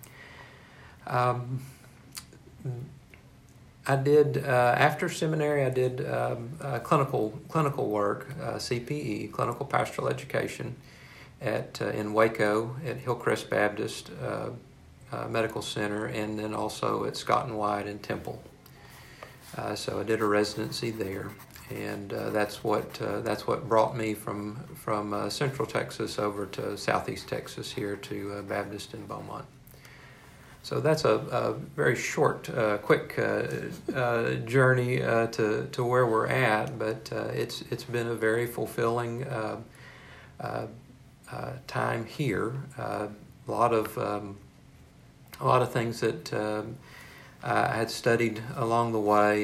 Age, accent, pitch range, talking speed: 50-69, American, 105-130 Hz, 140 wpm